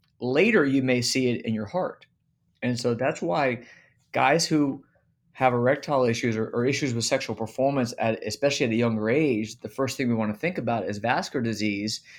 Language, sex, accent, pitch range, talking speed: English, male, American, 105-120 Hz, 195 wpm